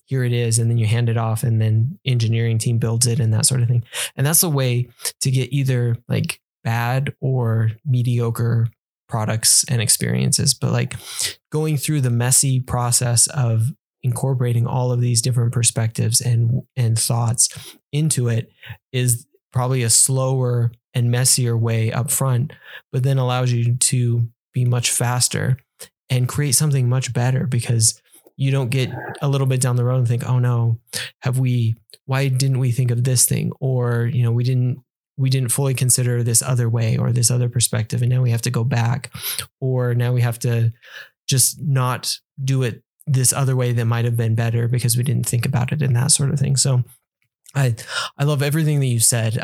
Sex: male